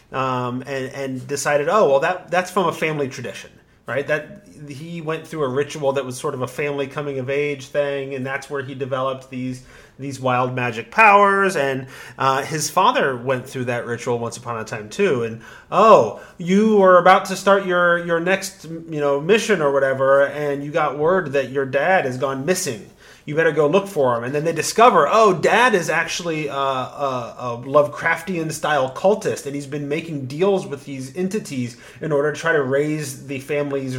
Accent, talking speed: American, 200 wpm